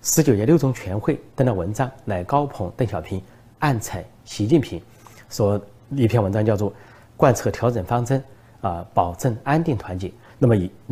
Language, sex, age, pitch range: Chinese, male, 30-49, 100-125 Hz